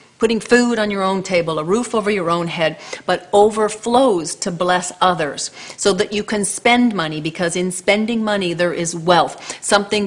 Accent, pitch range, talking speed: American, 165-205 Hz, 185 wpm